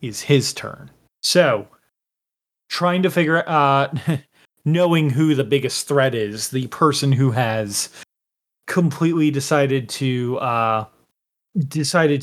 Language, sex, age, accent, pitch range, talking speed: English, male, 30-49, American, 130-160 Hz, 115 wpm